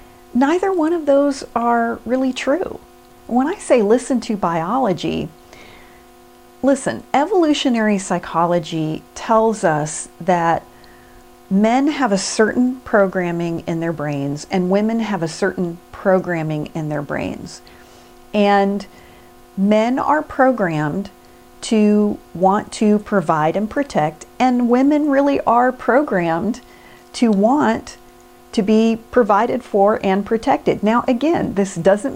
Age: 40-59